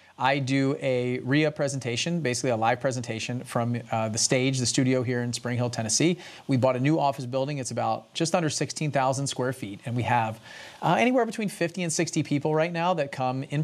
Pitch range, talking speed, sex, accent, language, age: 120-150 Hz, 210 wpm, male, American, English, 30-49